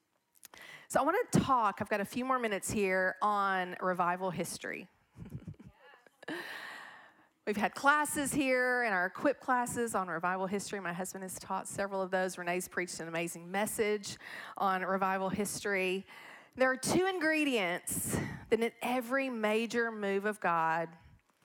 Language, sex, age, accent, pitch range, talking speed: English, female, 40-59, American, 185-230 Hz, 145 wpm